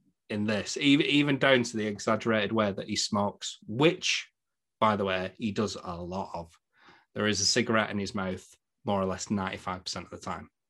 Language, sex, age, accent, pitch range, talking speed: English, male, 30-49, British, 100-130 Hz, 190 wpm